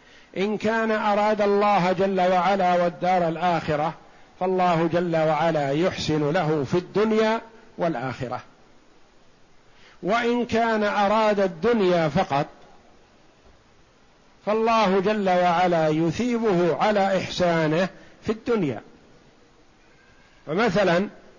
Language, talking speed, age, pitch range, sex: Arabic, 85 wpm, 50-69, 155-215 Hz, male